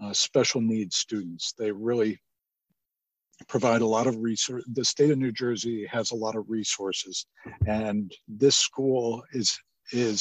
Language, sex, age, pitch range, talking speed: English, male, 50-69, 105-130 Hz, 155 wpm